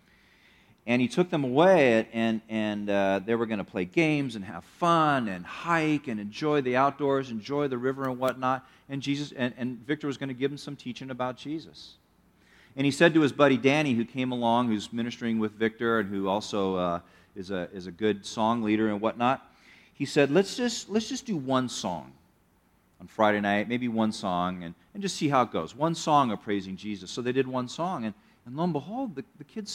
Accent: American